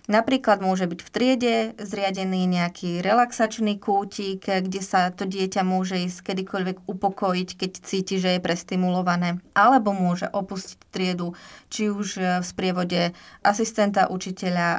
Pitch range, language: 180-205 Hz, Slovak